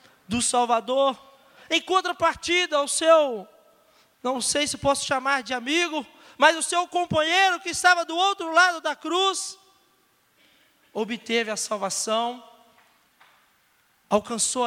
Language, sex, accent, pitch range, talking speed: Portuguese, male, Brazilian, 285-360 Hz, 115 wpm